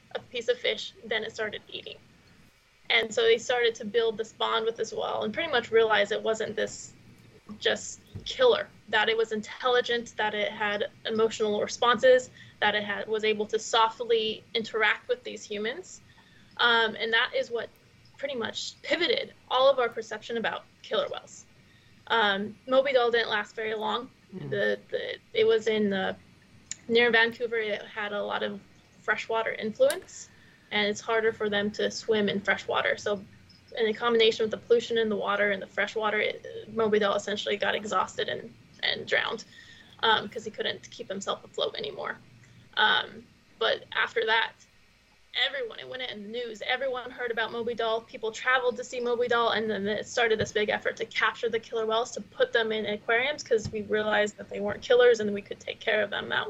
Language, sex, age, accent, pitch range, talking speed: English, female, 20-39, American, 215-255 Hz, 190 wpm